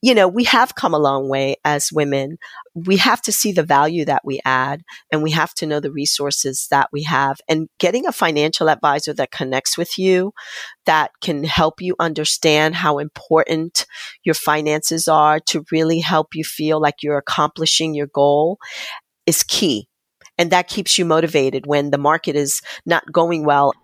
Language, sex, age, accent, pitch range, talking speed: English, female, 40-59, American, 145-165 Hz, 180 wpm